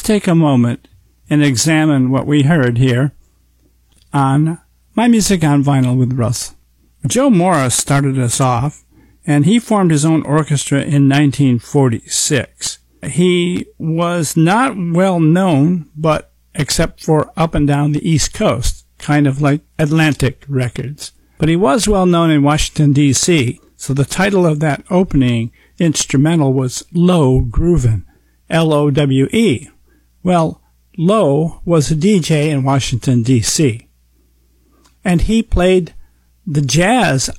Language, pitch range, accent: English, 130-175 Hz, American